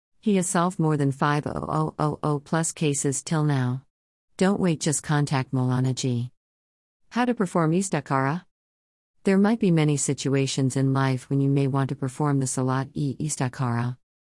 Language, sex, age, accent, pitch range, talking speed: English, female, 50-69, American, 130-170 Hz, 150 wpm